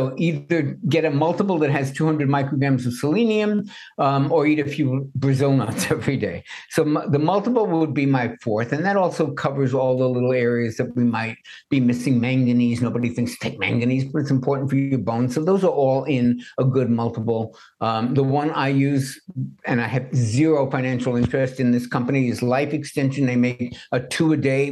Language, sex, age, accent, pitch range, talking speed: English, male, 60-79, American, 120-145 Hz, 200 wpm